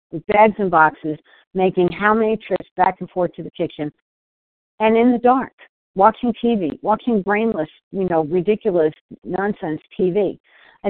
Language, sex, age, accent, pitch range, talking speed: English, female, 50-69, American, 150-195 Hz, 155 wpm